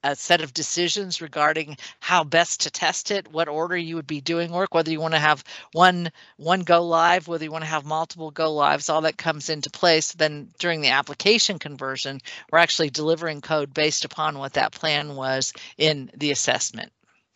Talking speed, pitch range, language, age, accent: 195 wpm, 150-175 Hz, English, 50-69, American